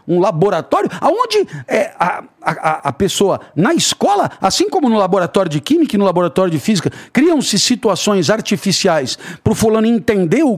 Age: 60-79